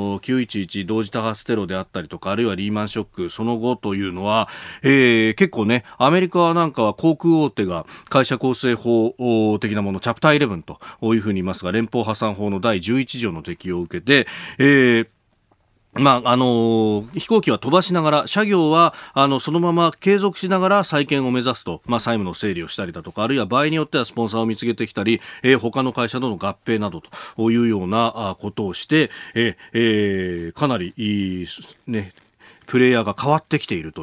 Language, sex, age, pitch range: Japanese, male, 40-59, 100-145 Hz